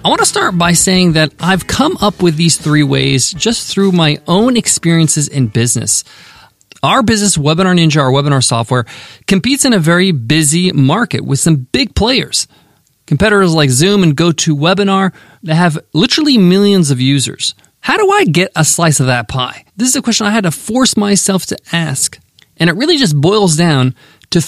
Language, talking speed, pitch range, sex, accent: English, 185 wpm, 145-205 Hz, male, American